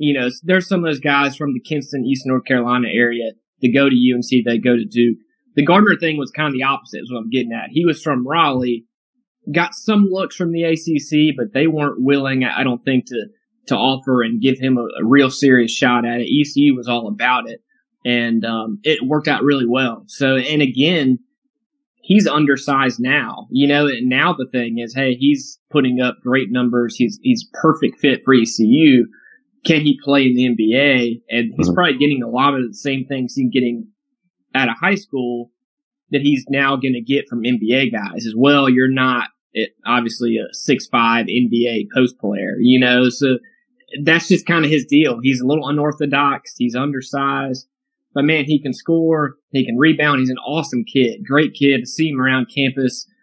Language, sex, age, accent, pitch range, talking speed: English, male, 20-39, American, 125-160 Hz, 200 wpm